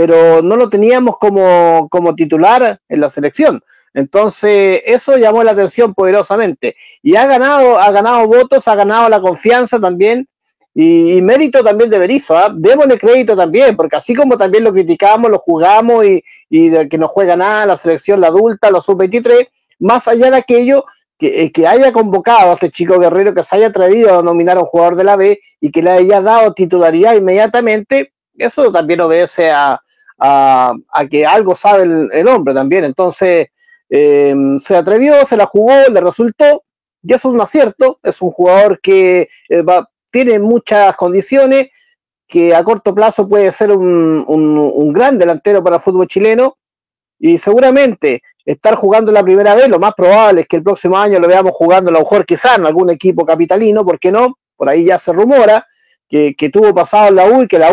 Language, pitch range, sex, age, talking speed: Spanish, 175-240 Hz, male, 50-69, 190 wpm